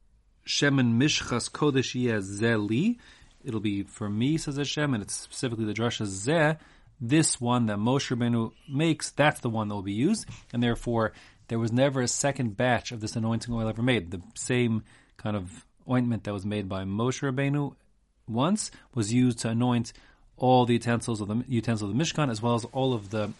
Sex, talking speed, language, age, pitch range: male, 190 wpm, English, 30-49, 105-135 Hz